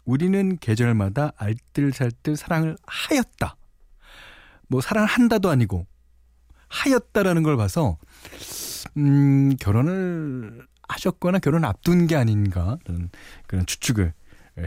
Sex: male